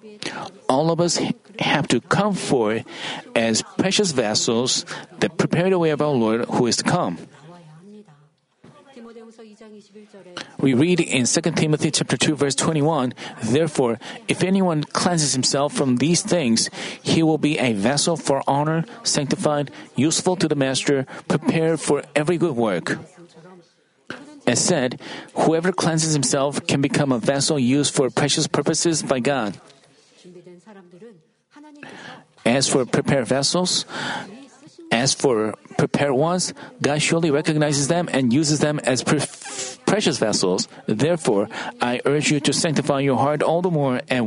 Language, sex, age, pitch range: Korean, male, 40-59, 140-180 Hz